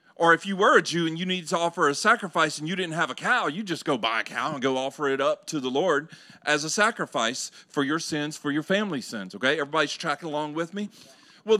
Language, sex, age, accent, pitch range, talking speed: English, male, 40-59, American, 180-245 Hz, 260 wpm